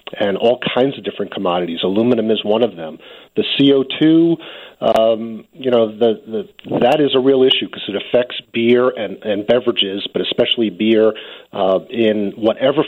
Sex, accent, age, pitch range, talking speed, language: male, American, 40-59, 95-130 Hz, 170 wpm, English